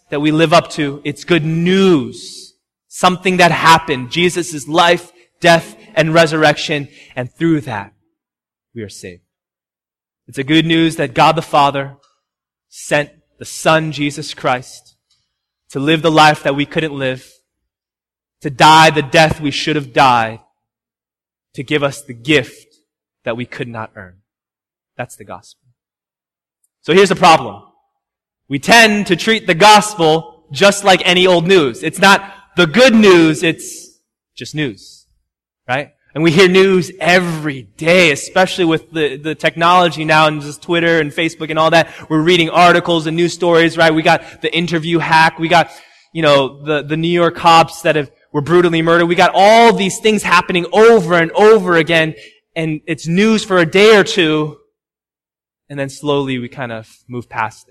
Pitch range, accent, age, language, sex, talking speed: 145-175 Hz, American, 20-39, English, male, 165 wpm